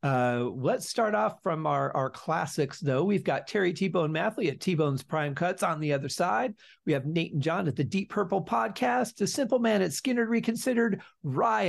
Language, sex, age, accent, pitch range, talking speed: English, male, 40-59, American, 145-210 Hz, 210 wpm